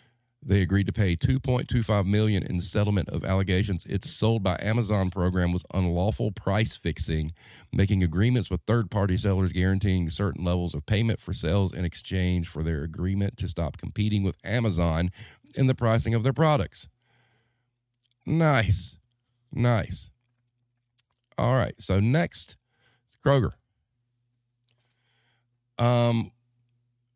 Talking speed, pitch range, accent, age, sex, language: 120 wpm, 90-120 Hz, American, 40-59, male, English